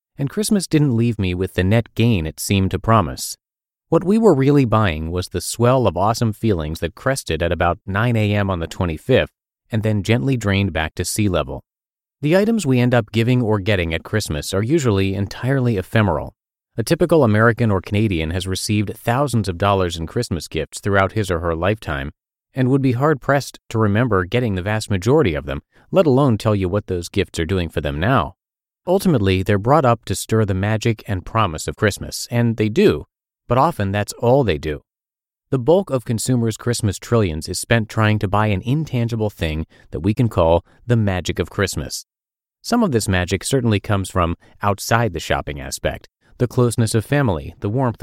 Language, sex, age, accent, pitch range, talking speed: English, male, 30-49, American, 95-120 Hz, 195 wpm